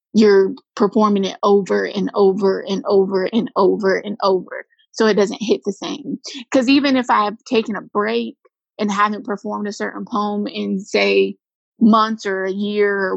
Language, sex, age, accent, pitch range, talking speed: English, female, 20-39, American, 205-260 Hz, 180 wpm